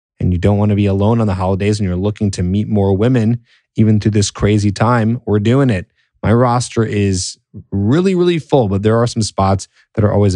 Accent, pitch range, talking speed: American, 90-120 Hz, 225 wpm